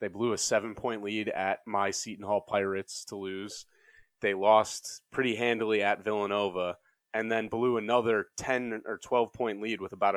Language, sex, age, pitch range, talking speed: English, male, 30-49, 100-120 Hz, 165 wpm